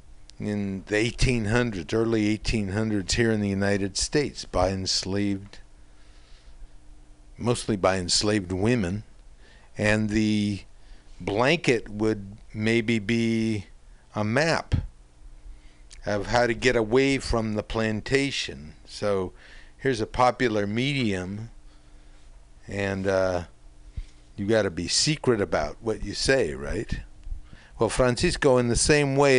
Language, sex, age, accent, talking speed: English, male, 60-79, American, 110 wpm